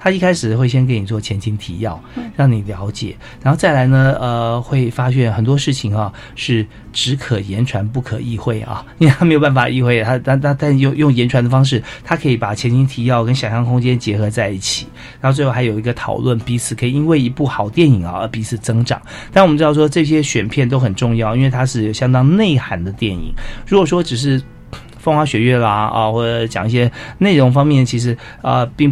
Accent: native